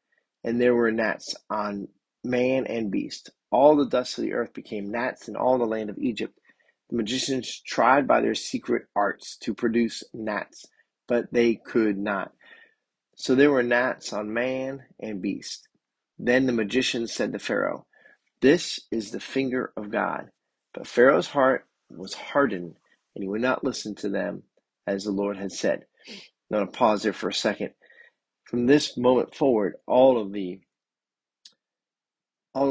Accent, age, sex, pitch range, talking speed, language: American, 30-49, male, 100-120 Hz, 160 wpm, English